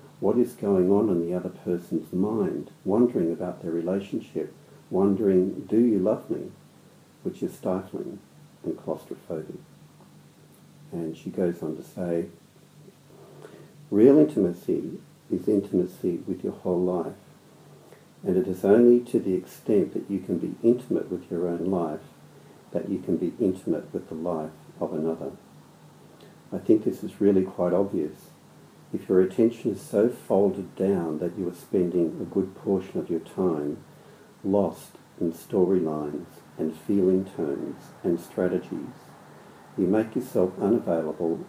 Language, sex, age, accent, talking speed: English, male, 50-69, Australian, 145 wpm